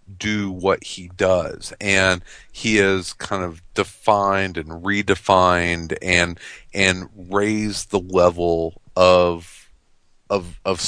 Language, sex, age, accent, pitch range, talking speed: English, male, 40-59, American, 90-105 Hz, 110 wpm